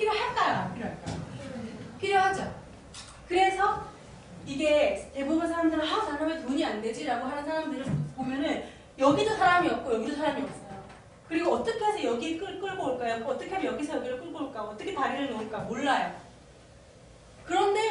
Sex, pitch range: female, 250-385 Hz